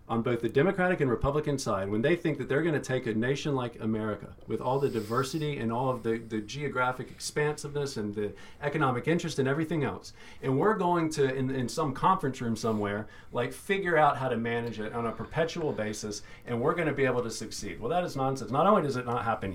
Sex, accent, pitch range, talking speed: male, American, 115-155 Hz, 235 wpm